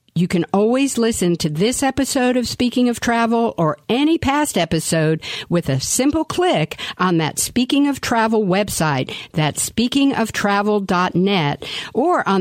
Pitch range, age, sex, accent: 165-250 Hz, 50-69, female, American